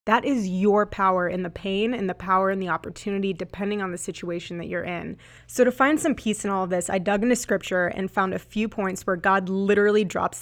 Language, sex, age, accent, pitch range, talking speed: English, female, 20-39, American, 185-220 Hz, 240 wpm